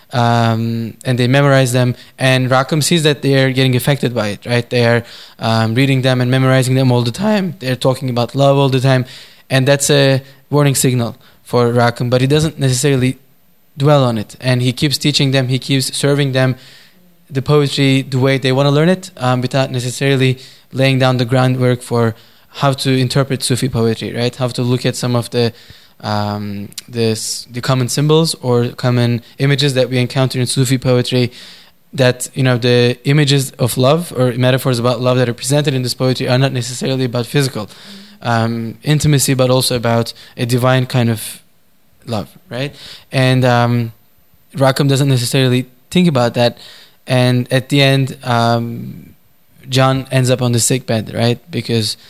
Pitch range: 120-135 Hz